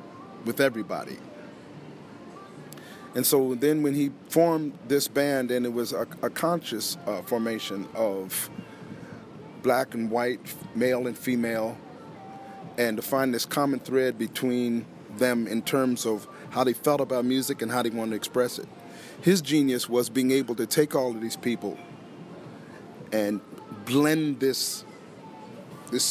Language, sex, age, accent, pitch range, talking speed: English, male, 40-59, American, 115-140 Hz, 145 wpm